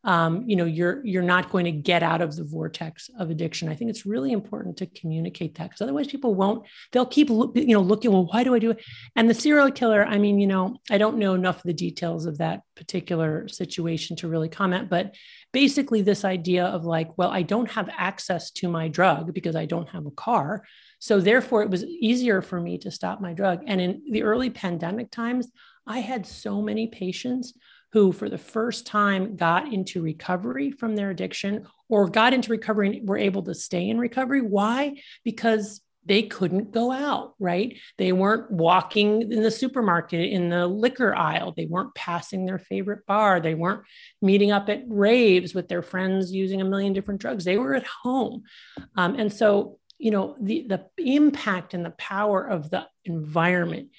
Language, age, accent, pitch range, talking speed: English, 40-59, American, 180-225 Hz, 200 wpm